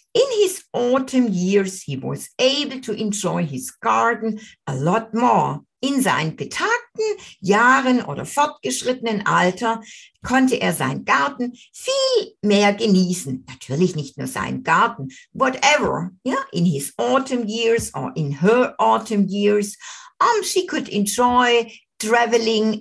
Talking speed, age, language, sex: 130 wpm, 60-79, German, female